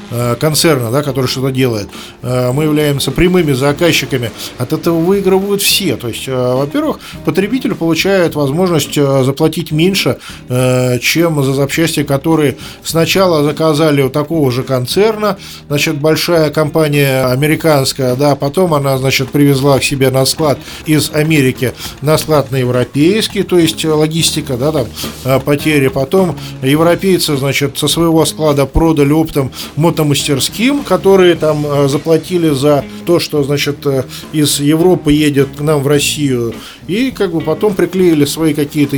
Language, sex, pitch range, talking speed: Russian, male, 135-165 Hz, 135 wpm